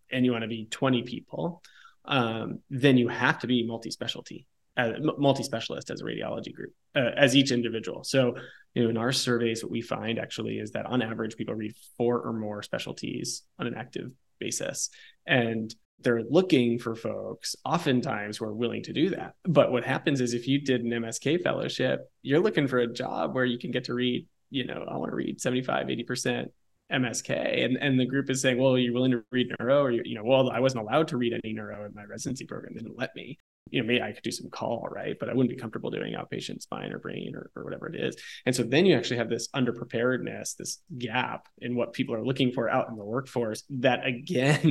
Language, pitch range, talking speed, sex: English, 115-130 Hz, 225 wpm, male